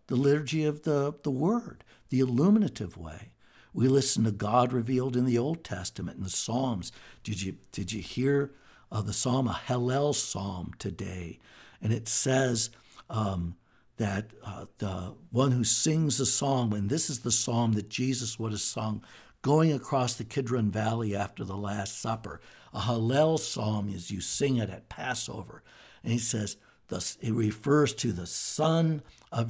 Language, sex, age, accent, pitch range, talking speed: English, male, 60-79, American, 110-135 Hz, 165 wpm